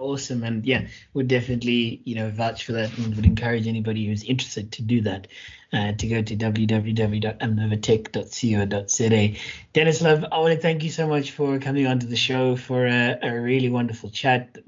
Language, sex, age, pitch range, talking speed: English, male, 20-39, 110-130 Hz, 190 wpm